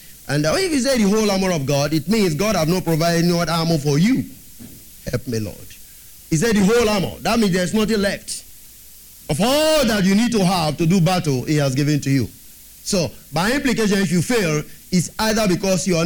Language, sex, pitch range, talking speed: English, male, 145-195 Hz, 225 wpm